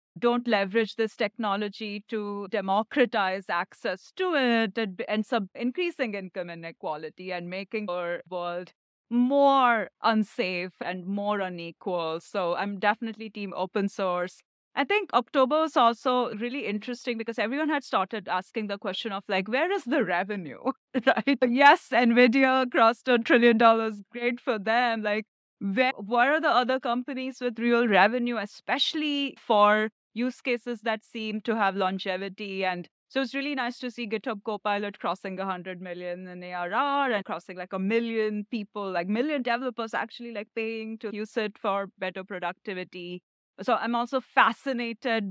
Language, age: English, 30-49